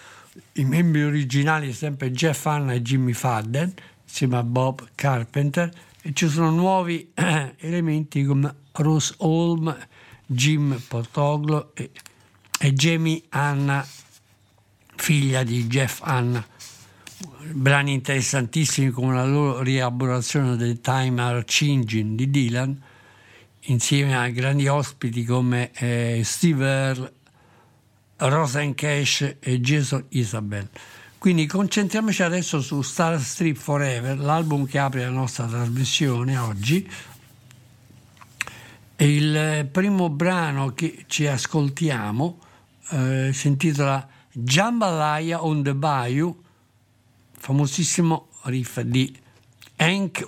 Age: 60-79